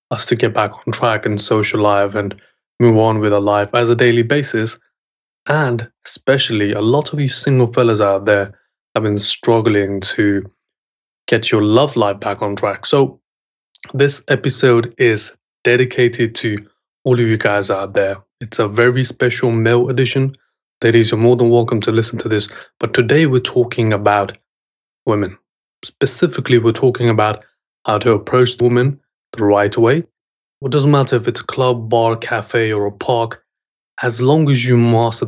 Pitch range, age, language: 105-130 Hz, 20-39, English